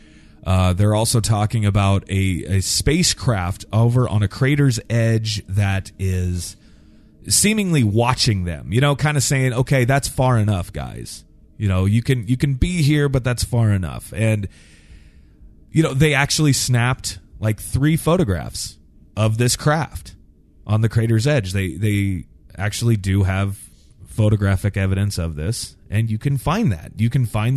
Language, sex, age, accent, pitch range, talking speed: English, male, 30-49, American, 95-130 Hz, 160 wpm